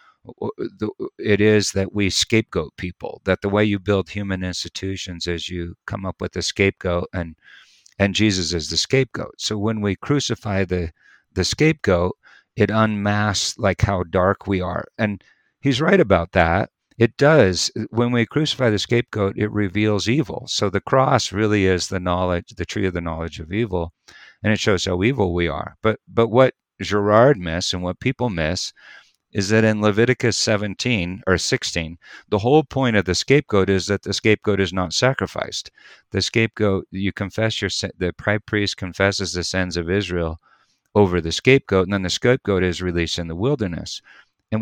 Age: 50-69